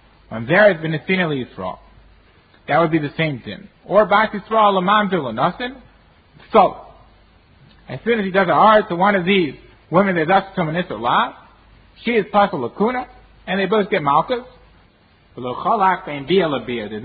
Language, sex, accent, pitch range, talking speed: English, male, American, 115-180 Hz, 160 wpm